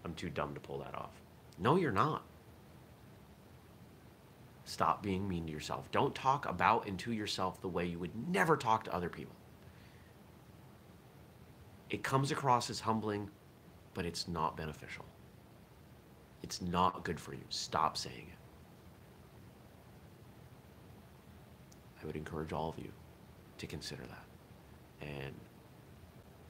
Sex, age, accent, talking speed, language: male, 30-49, American, 130 wpm, English